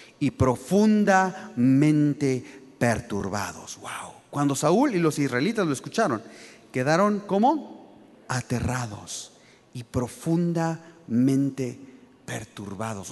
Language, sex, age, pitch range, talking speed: Spanish, male, 40-59, 140-200 Hz, 80 wpm